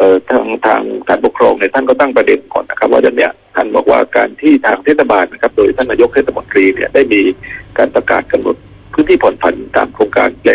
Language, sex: Thai, male